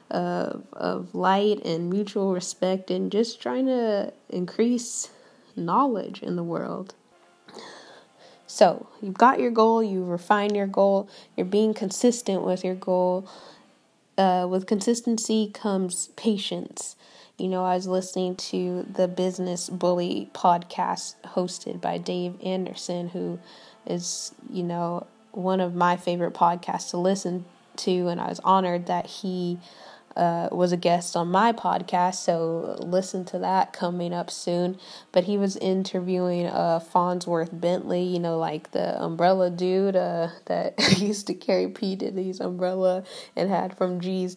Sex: female